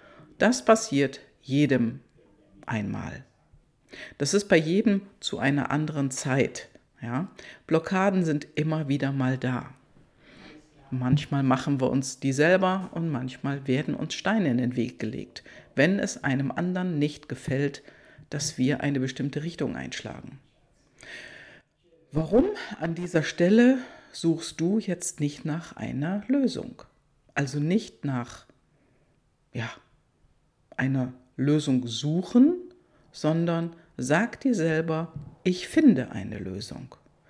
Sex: female